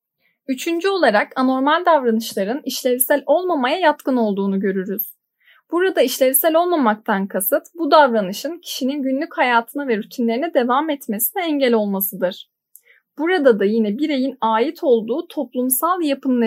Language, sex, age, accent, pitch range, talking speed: Turkish, female, 10-29, native, 225-320 Hz, 115 wpm